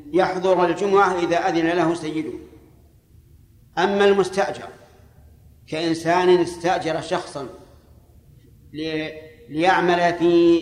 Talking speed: 75 wpm